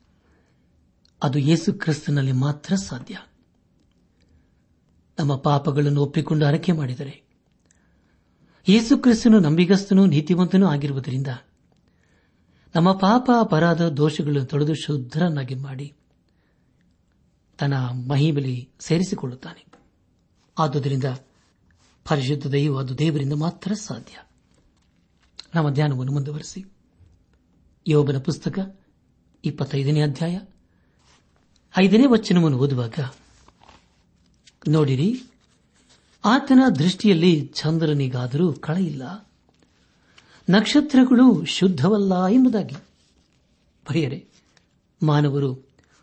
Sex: male